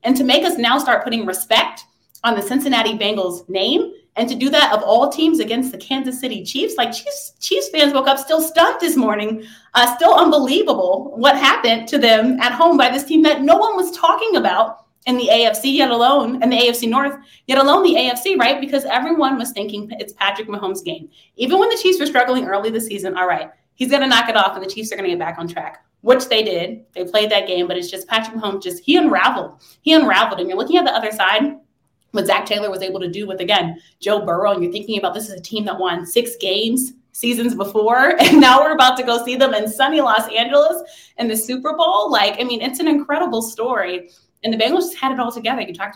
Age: 30-49